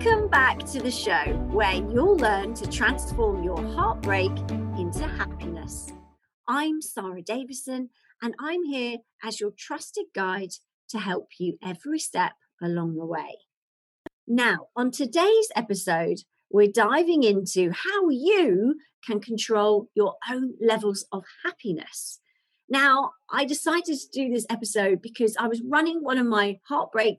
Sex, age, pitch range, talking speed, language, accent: female, 40-59, 195-280 Hz, 140 wpm, English, British